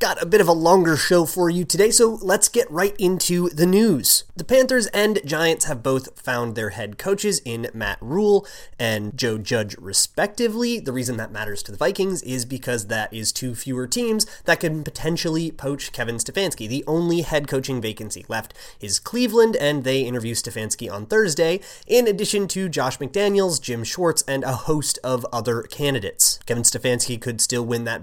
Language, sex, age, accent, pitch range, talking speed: English, male, 30-49, American, 120-175 Hz, 185 wpm